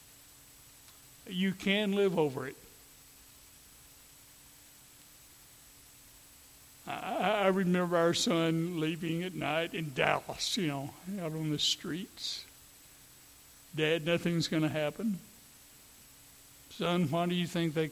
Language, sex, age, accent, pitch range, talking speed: English, male, 60-79, American, 150-170 Hz, 105 wpm